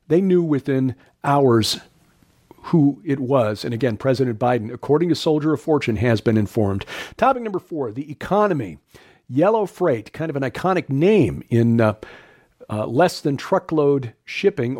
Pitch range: 125-150 Hz